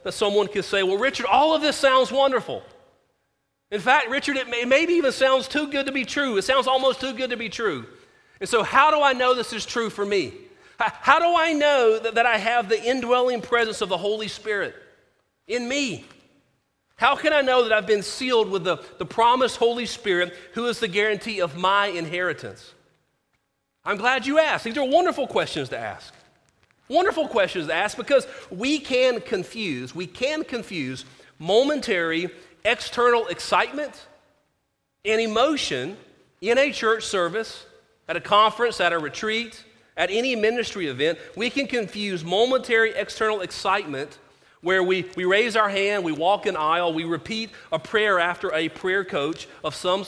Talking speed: 175 wpm